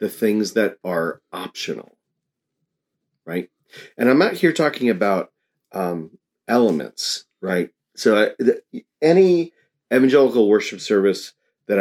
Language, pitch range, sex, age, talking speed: English, 90-115 Hz, male, 40-59, 105 wpm